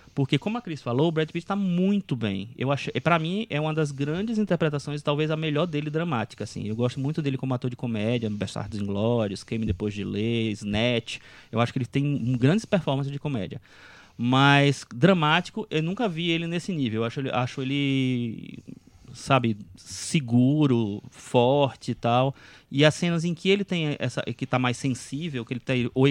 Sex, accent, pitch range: male, Brazilian, 120-170 Hz